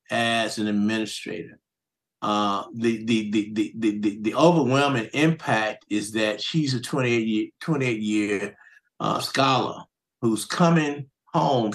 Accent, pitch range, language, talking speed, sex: American, 115-140 Hz, English, 130 wpm, male